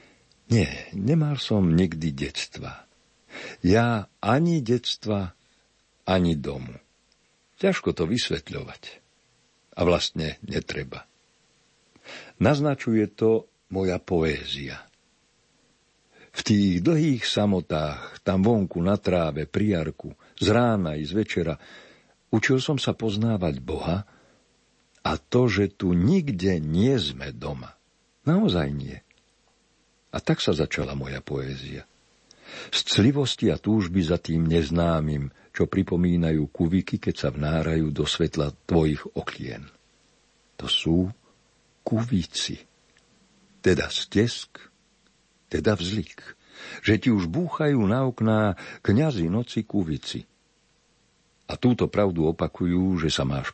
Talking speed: 105 wpm